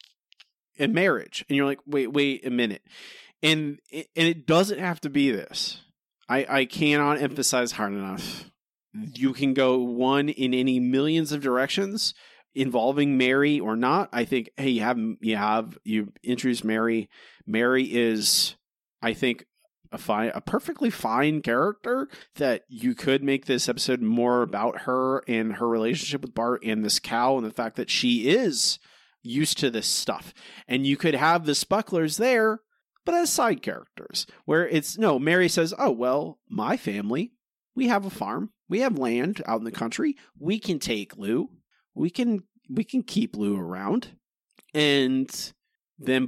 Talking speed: 165 wpm